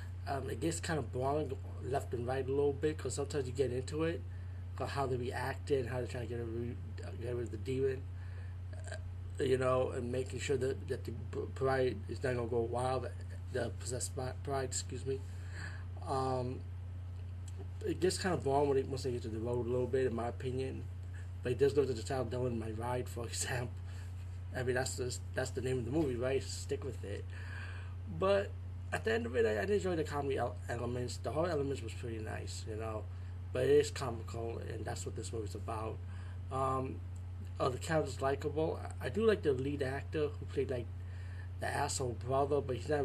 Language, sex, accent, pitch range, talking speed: English, male, American, 90-125 Hz, 210 wpm